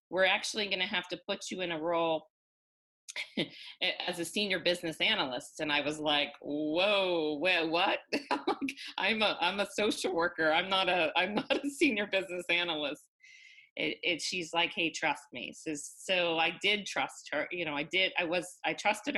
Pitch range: 155-185 Hz